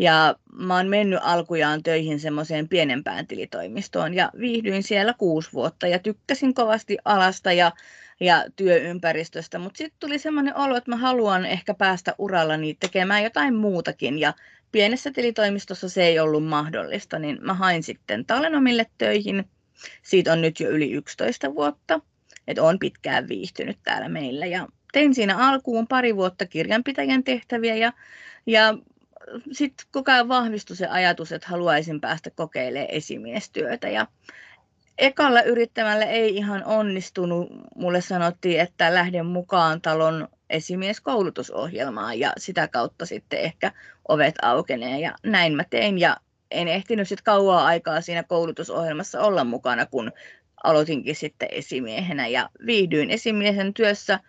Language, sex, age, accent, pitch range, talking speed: Finnish, female, 30-49, native, 165-230 Hz, 135 wpm